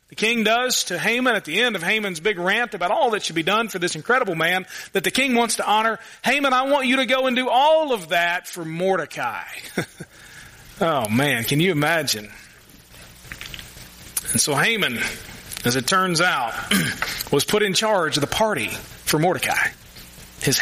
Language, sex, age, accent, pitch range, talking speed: English, male, 40-59, American, 130-215 Hz, 185 wpm